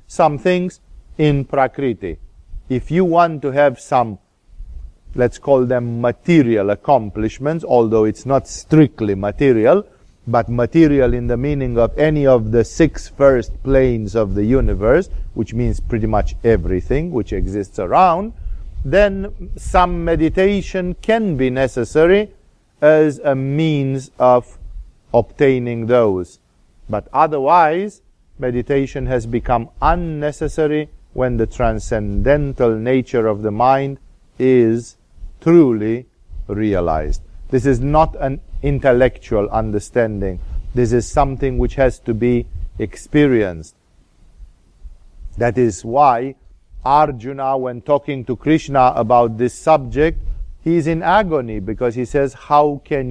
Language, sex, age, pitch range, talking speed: English, male, 50-69, 105-140 Hz, 120 wpm